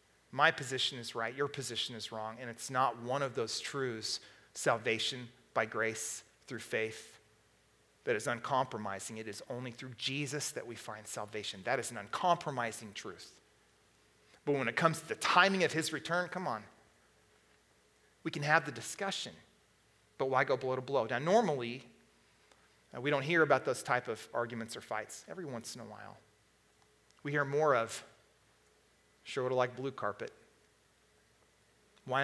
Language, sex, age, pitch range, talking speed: English, male, 40-59, 115-145 Hz, 165 wpm